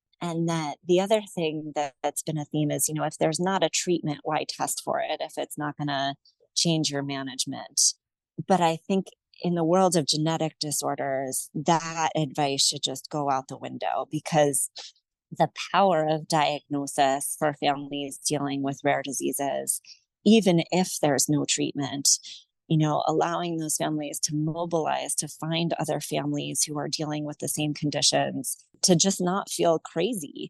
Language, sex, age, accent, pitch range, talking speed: English, female, 30-49, American, 150-170 Hz, 165 wpm